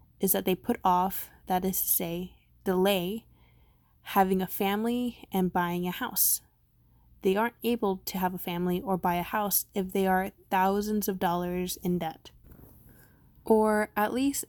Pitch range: 175-205 Hz